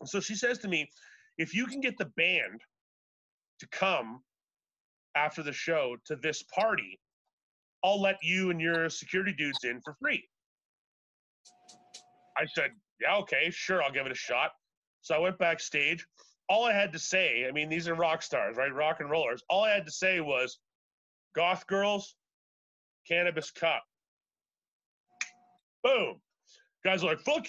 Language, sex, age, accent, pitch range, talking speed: English, male, 30-49, American, 155-215 Hz, 160 wpm